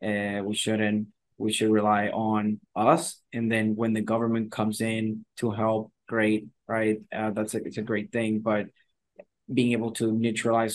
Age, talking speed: 20-39, 175 wpm